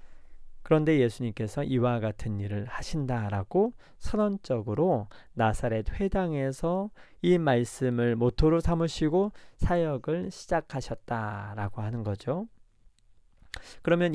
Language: Korean